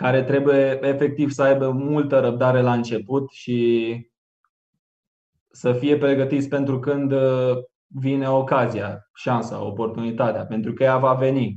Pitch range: 115-140 Hz